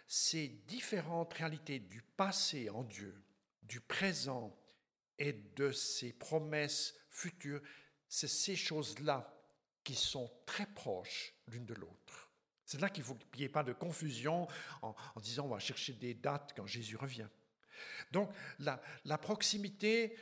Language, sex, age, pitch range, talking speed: French, male, 60-79, 135-180 Hz, 150 wpm